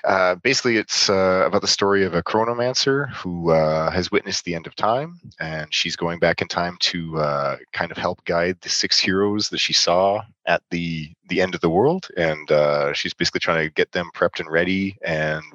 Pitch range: 80-100 Hz